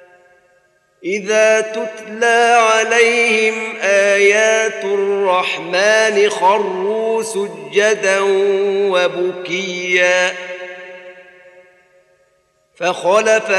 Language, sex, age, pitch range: Arabic, male, 40-59, 180-220 Hz